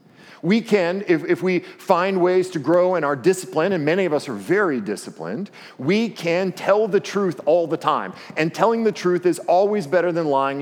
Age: 40-59